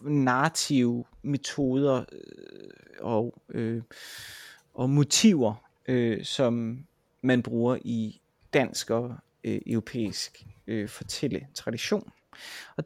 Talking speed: 85 wpm